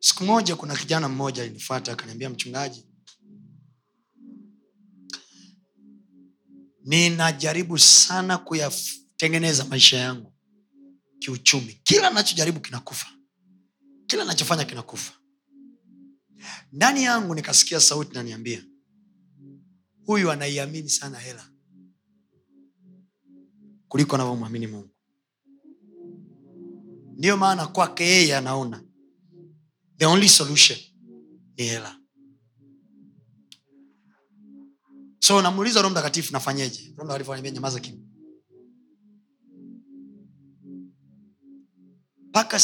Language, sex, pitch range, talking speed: Swahili, male, 130-205 Hz, 75 wpm